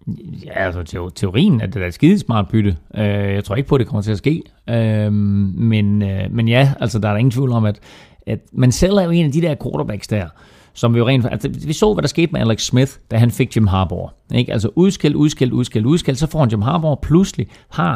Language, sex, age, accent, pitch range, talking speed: Danish, male, 40-59, native, 105-135 Hz, 255 wpm